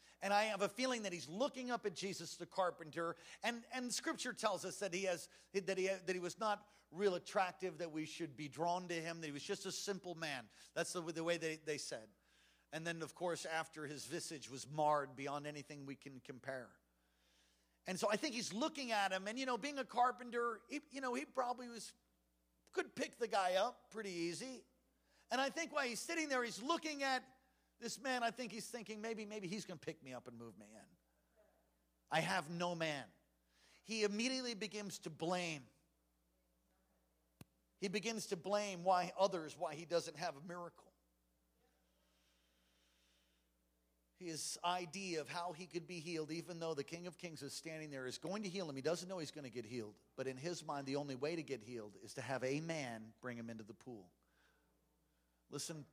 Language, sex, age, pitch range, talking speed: English, male, 50-69, 130-200 Hz, 205 wpm